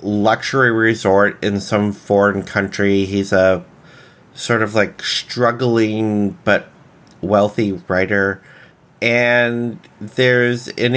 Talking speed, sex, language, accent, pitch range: 100 wpm, male, English, American, 95-120 Hz